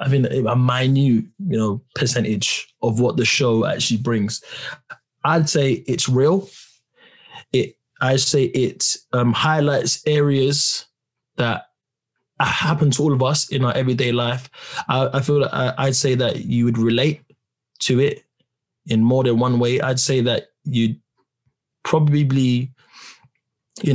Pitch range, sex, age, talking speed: 115-135 Hz, male, 20-39, 145 wpm